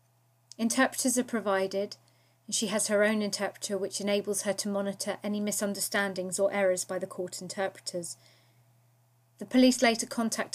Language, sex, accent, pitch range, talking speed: English, female, British, 180-210 Hz, 150 wpm